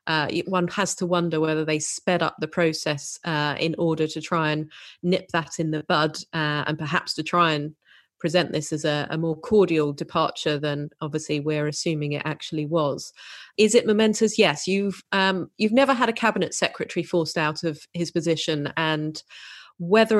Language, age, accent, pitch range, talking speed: English, 30-49, British, 155-180 Hz, 185 wpm